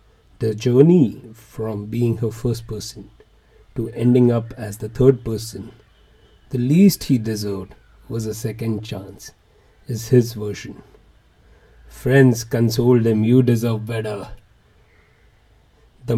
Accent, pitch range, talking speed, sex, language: Indian, 105-125 Hz, 120 wpm, male, English